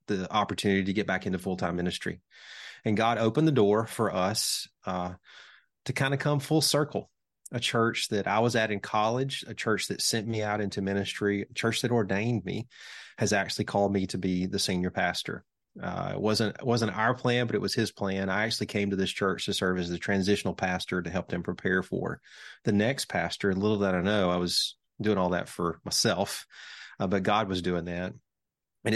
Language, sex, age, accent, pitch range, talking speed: English, male, 30-49, American, 90-110 Hz, 210 wpm